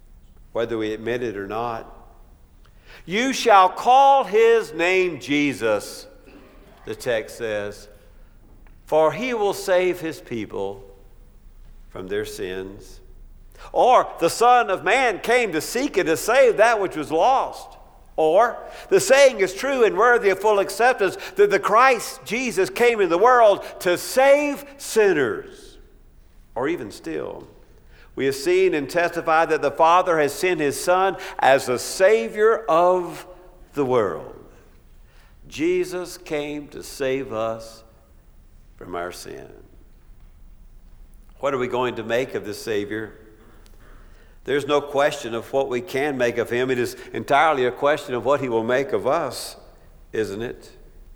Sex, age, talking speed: male, 60-79, 145 wpm